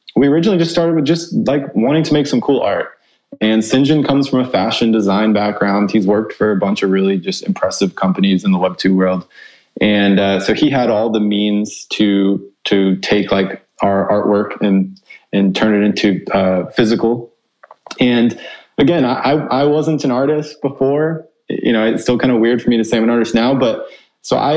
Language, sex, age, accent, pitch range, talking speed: English, male, 20-39, American, 100-135 Hz, 205 wpm